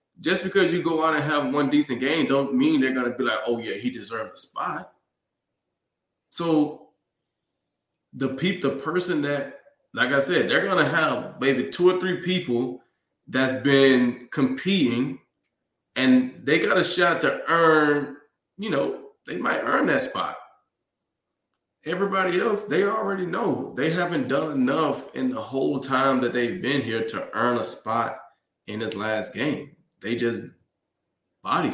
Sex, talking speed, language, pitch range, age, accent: male, 160 wpm, English, 105-160 Hz, 20-39, American